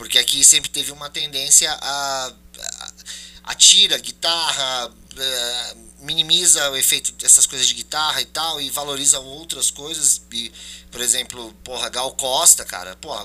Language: Portuguese